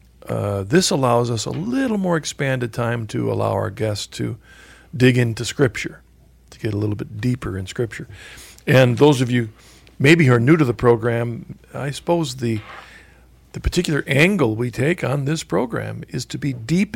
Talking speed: 180 wpm